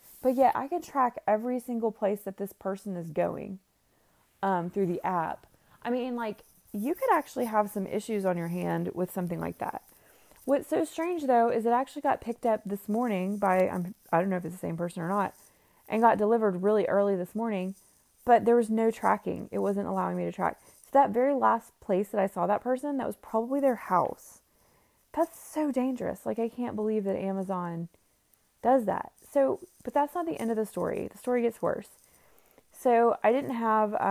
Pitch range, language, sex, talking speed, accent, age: 185-240 Hz, English, female, 210 wpm, American, 20-39